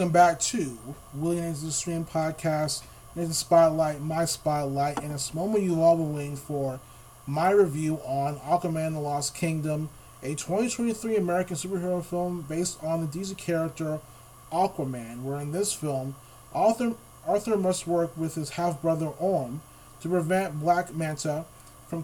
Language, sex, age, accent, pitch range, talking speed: English, male, 30-49, American, 140-175 Hz, 155 wpm